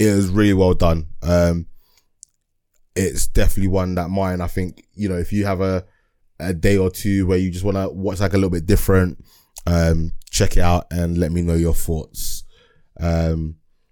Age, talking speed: 20-39, 195 wpm